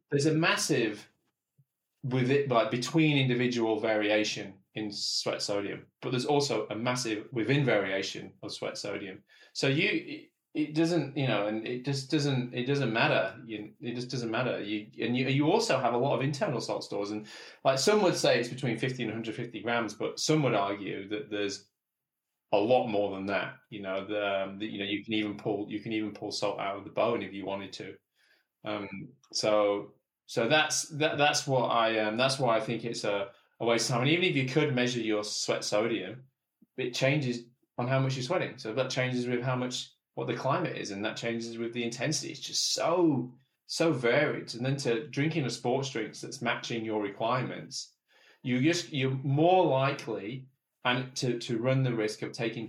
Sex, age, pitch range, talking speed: male, 20-39, 110-135 Hz, 205 wpm